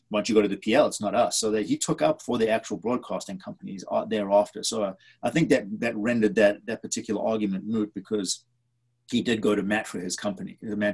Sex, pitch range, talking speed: male, 105-145 Hz, 220 wpm